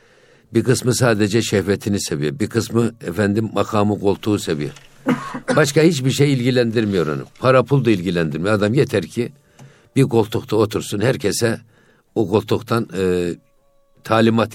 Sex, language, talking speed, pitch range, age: male, Turkish, 130 wpm, 100-125 Hz, 60-79